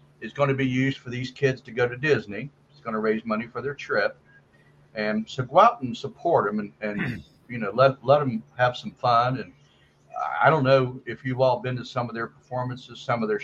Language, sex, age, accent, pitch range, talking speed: English, male, 50-69, American, 105-125 Hz, 235 wpm